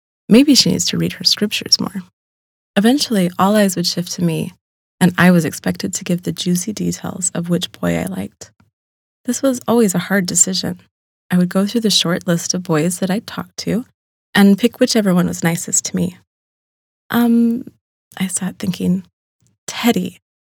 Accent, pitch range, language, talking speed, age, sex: American, 175-220 Hz, English, 180 wpm, 20-39, female